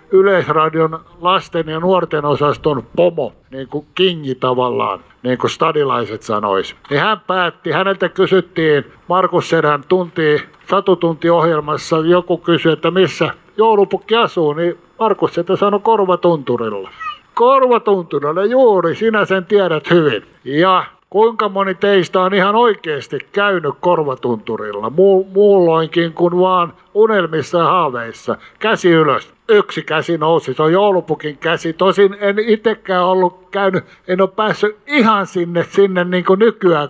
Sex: male